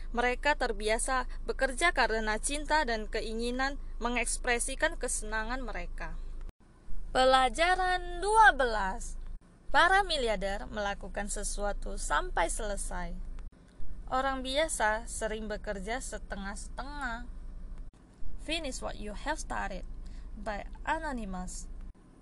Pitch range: 215-290 Hz